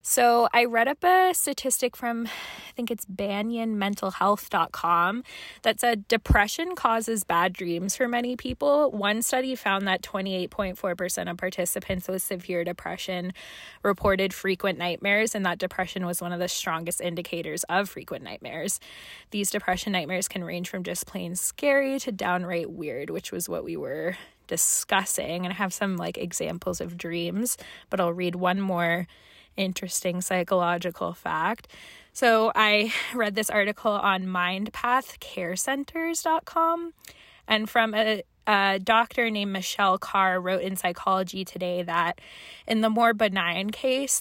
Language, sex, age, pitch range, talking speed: English, female, 20-39, 180-225 Hz, 140 wpm